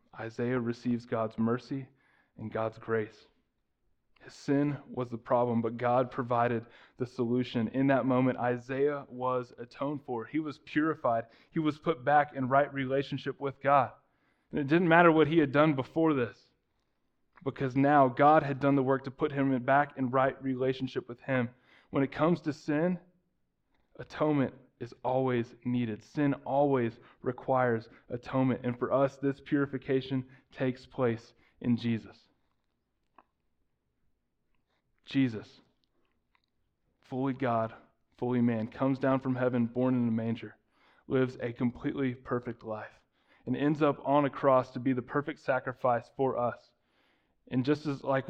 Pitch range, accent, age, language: 120-145 Hz, American, 20-39, English